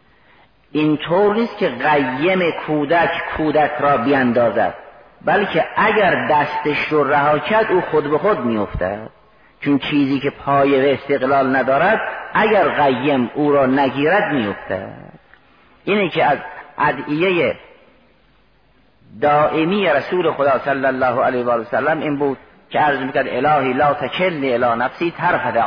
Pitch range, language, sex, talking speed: 130-170 Hz, Persian, male, 130 wpm